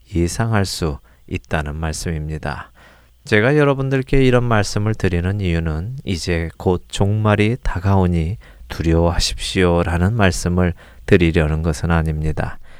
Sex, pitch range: male, 85-115 Hz